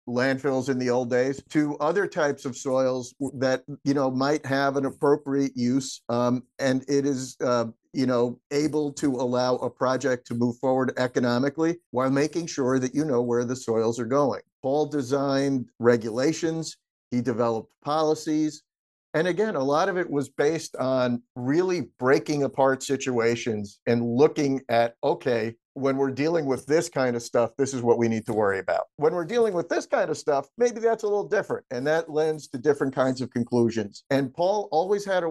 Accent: American